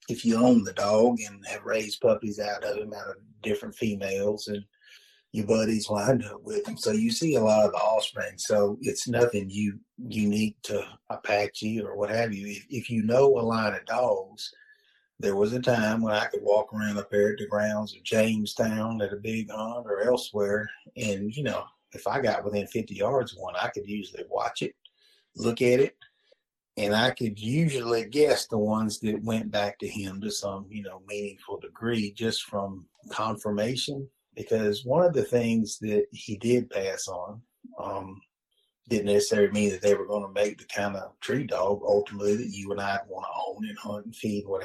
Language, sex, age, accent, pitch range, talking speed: English, male, 30-49, American, 105-125 Hz, 200 wpm